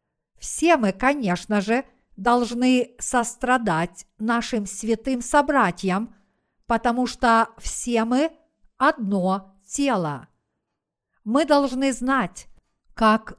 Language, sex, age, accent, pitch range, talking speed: Russian, female, 50-69, native, 210-255 Hz, 85 wpm